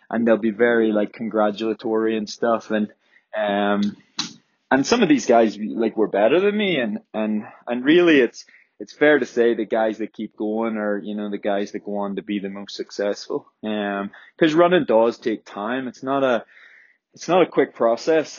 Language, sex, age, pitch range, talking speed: English, male, 20-39, 100-115 Hz, 200 wpm